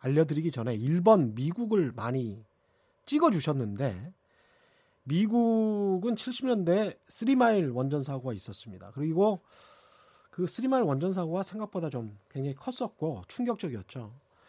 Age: 30-49